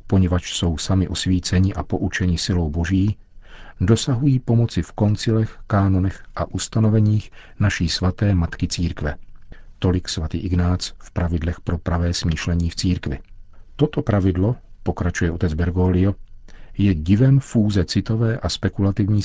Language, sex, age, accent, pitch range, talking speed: Czech, male, 50-69, native, 90-105 Hz, 125 wpm